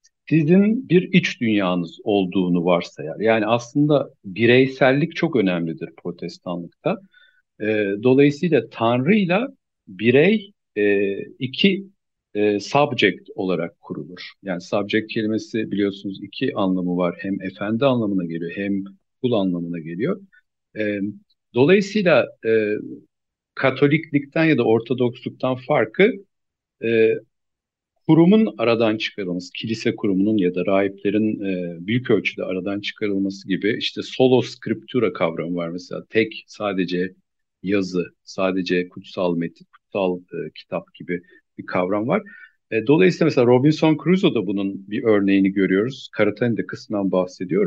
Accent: native